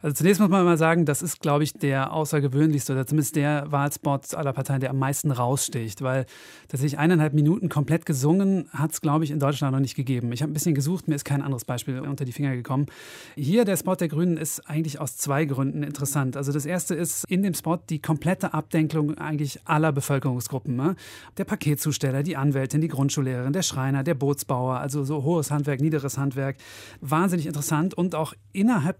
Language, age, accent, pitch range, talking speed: German, 30-49, German, 140-170 Hz, 200 wpm